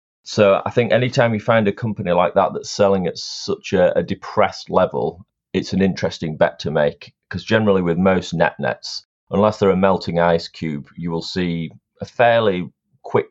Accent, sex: British, male